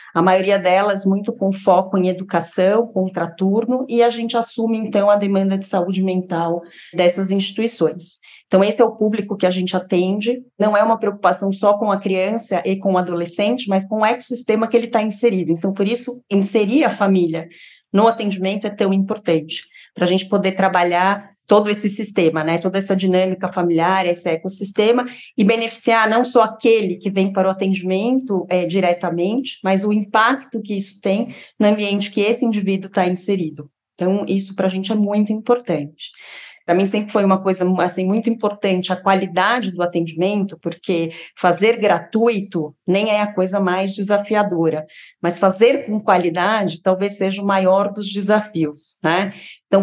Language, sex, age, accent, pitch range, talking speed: Portuguese, female, 30-49, Brazilian, 185-215 Hz, 170 wpm